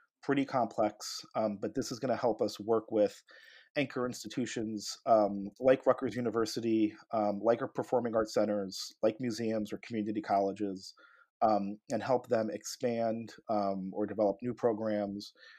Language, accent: English, American